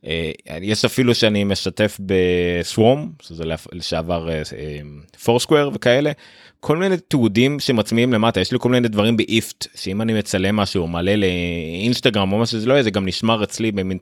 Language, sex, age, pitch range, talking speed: Hebrew, male, 30-49, 90-115 Hz, 170 wpm